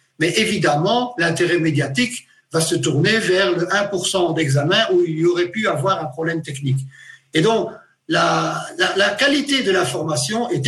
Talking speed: 165 wpm